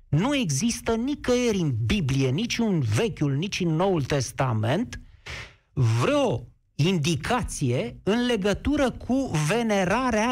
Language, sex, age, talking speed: Romanian, male, 50-69, 105 wpm